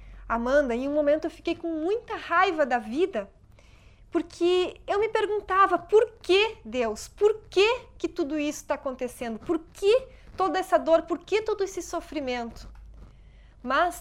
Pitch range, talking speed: 245-335 Hz, 155 wpm